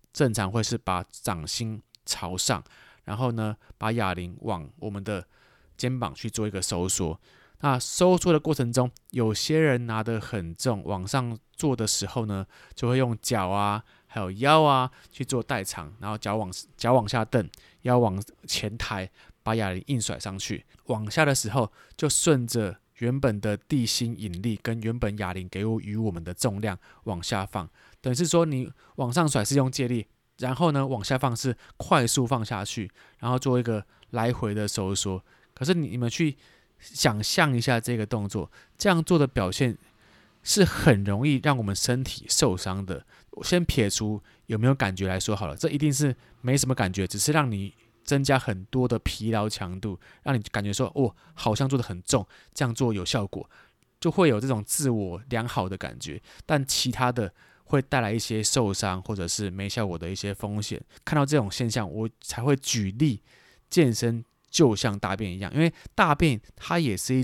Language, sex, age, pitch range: Chinese, male, 20-39, 105-130 Hz